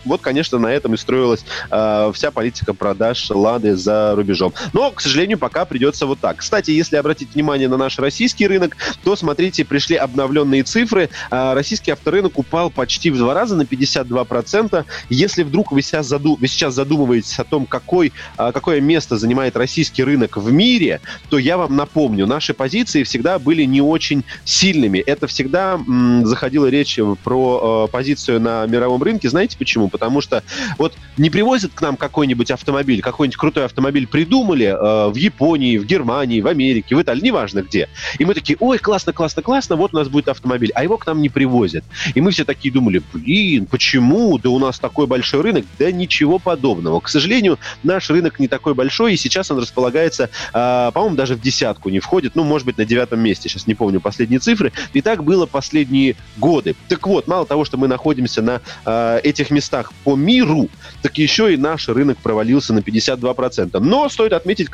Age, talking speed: 20-39, 185 wpm